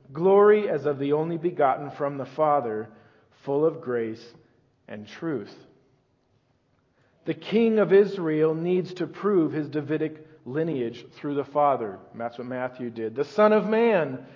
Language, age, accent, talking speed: English, 50-69, American, 145 wpm